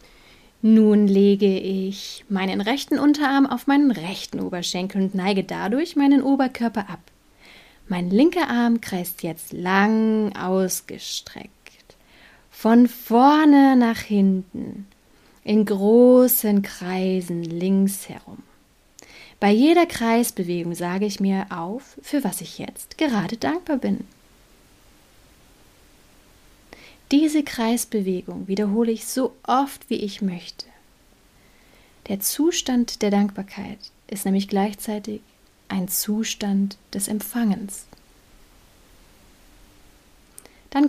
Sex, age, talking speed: female, 30-49, 100 wpm